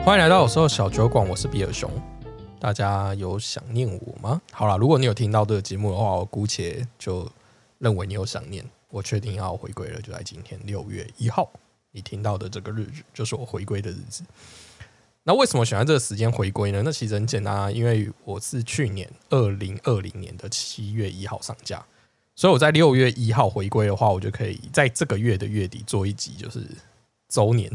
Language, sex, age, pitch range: Chinese, male, 20-39, 100-120 Hz